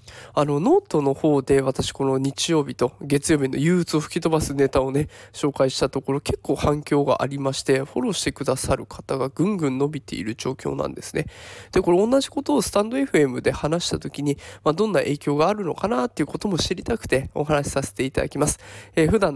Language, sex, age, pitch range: Japanese, male, 20-39, 140-215 Hz